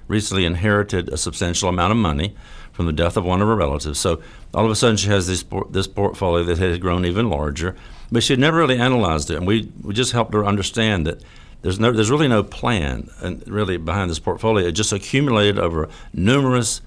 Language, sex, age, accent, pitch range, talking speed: English, male, 60-79, American, 85-115 Hz, 220 wpm